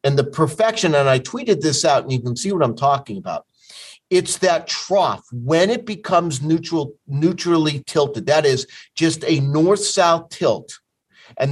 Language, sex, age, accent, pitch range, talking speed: English, male, 50-69, American, 135-170 Hz, 165 wpm